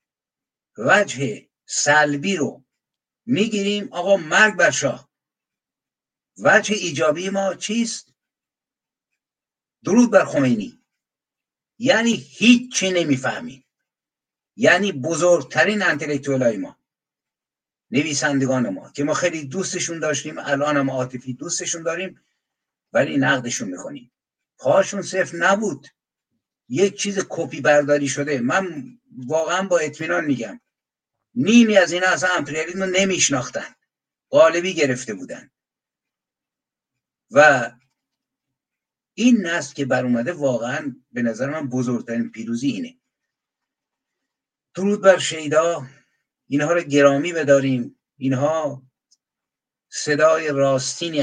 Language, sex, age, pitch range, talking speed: Persian, male, 60-79, 135-200 Hz, 95 wpm